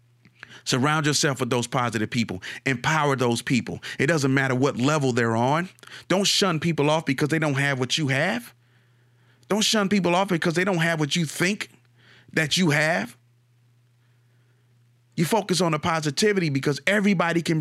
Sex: male